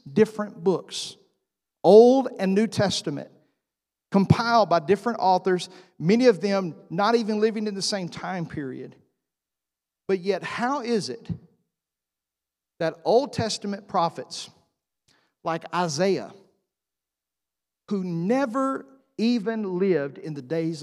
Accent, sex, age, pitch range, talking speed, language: American, male, 50-69, 160-220 Hz, 110 wpm, English